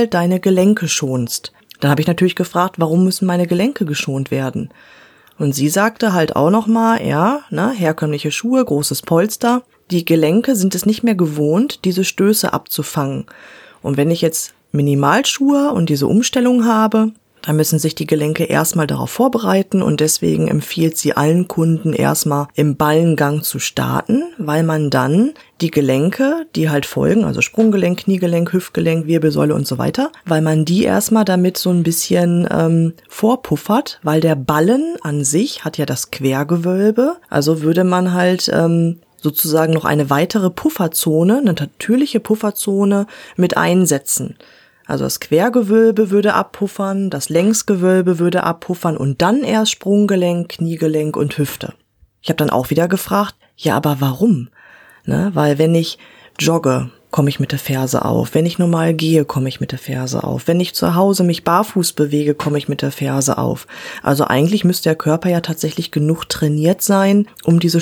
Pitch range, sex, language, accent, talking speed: 150-200 Hz, female, German, German, 160 wpm